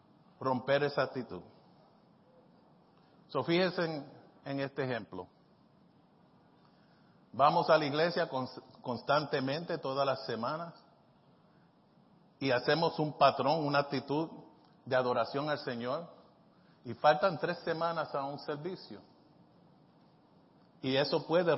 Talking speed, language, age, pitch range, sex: 105 wpm, Spanish, 50-69, 130-160 Hz, male